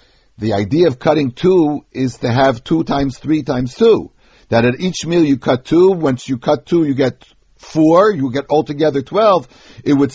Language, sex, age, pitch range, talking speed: English, male, 60-79, 125-170 Hz, 195 wpm